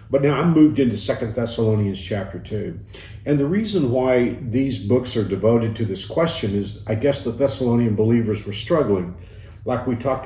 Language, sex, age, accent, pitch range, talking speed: English, male, 50-69, American, 105-125 Hz, 180 wpm